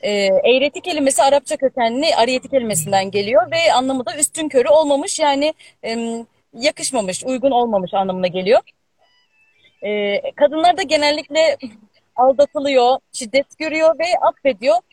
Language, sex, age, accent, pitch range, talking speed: Turkish, female, 30-49, native, 230-305 Hz, 120 wpm